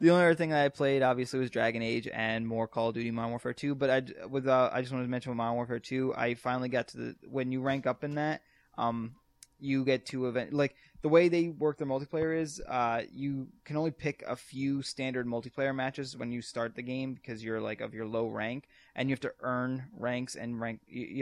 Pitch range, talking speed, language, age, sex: 115-135 Hz, 245 wpm, English, 20-39, male